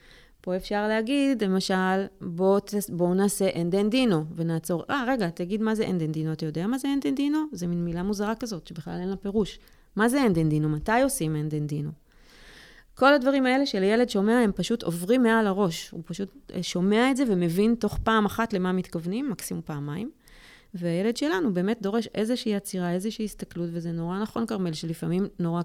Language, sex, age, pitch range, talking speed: Hebrew, female, 30-49, 170-210 Hz, 175 wpm